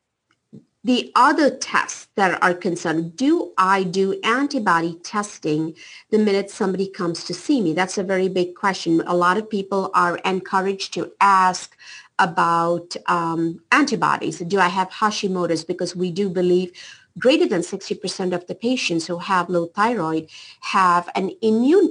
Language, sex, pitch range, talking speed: English, female, 175-220 Hz, 150 wpm